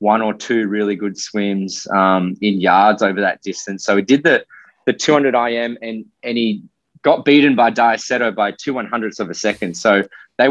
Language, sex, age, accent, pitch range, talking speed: English, male, 20-39, Australian, 105-120 Hz, 195 wpm